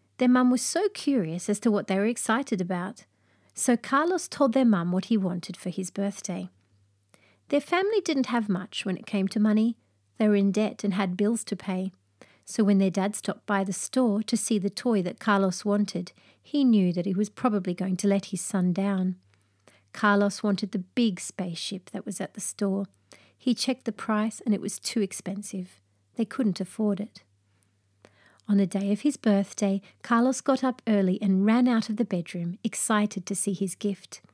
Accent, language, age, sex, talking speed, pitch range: Australian, English, 40-59, female, 195 wpm, 190-225 Hz